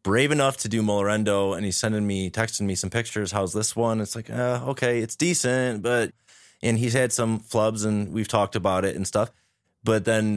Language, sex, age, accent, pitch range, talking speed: English, male, 30-49, American, 90-115 Hz, 220 wpm